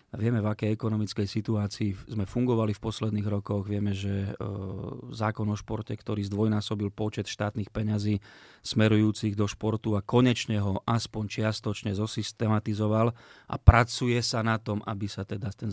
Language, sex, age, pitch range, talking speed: Slovak, male, 30-49, 100-115 Hz, 150 wpm